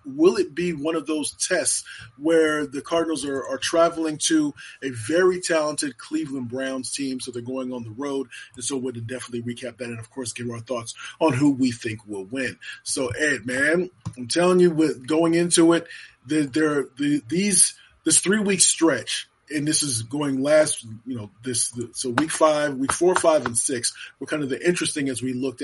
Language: English